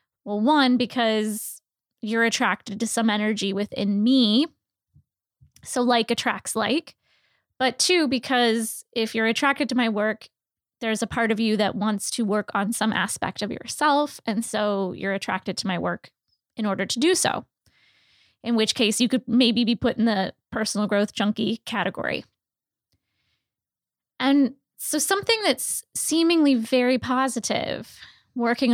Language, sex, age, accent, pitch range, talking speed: English, female, 10-29, American, 210-255 Hz, 150 wpm